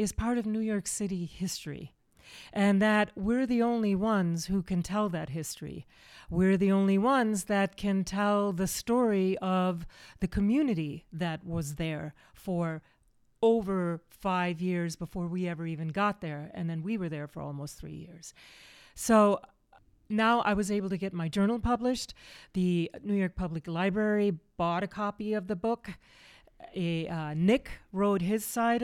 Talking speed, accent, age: 165 wpm, American, 40-59